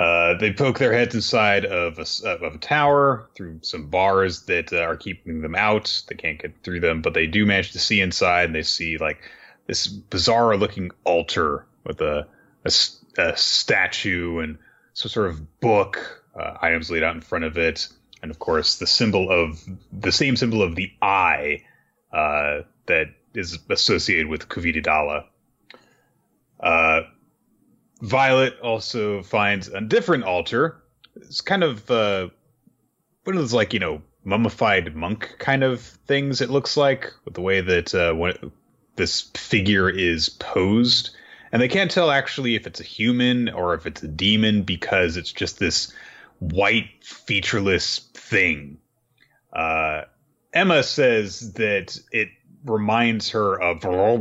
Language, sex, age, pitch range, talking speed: English, male, 30-49, 85-115 Hz, 155 wpm